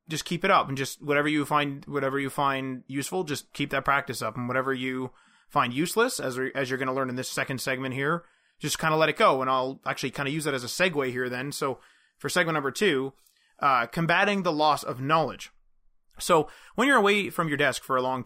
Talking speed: 240 wpm